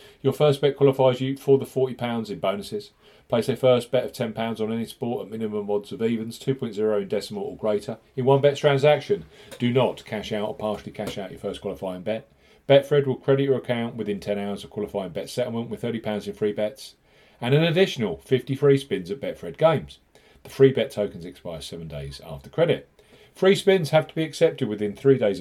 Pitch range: 105-140 Hz